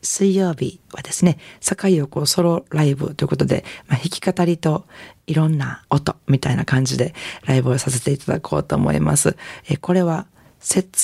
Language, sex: Japanese, female